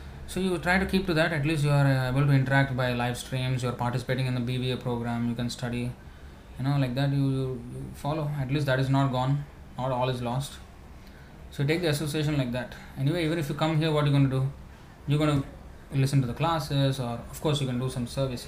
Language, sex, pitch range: English, male, 120-155 Hz